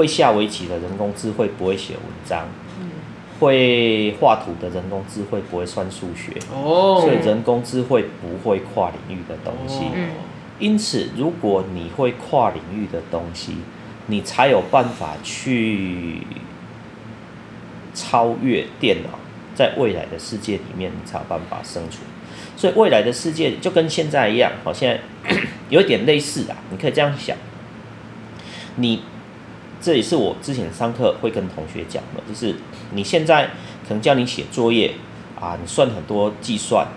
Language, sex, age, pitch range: Chinese, male, 40-59, 95-120 Hz